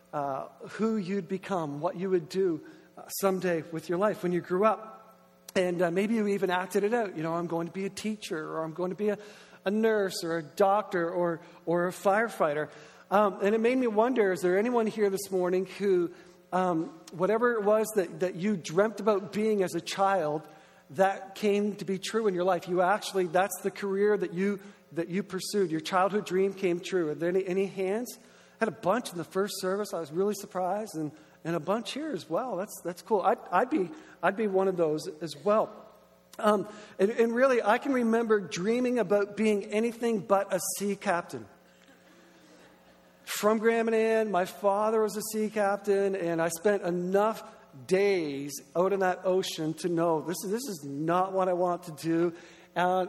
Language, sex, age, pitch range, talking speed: English, male, 50-69, 175-210 Hz, 205 wpm